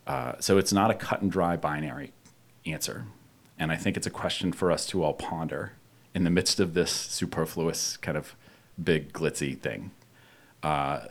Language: English